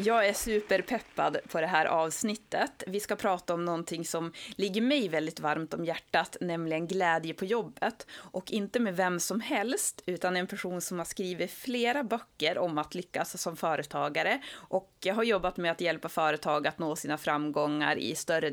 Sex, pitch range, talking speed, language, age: female, 165-210 Hz, 180 wpm, Swedish, 30-49